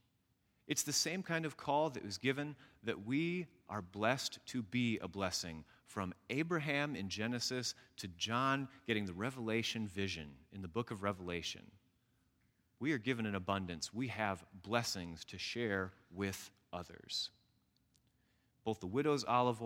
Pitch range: 100-135 Hz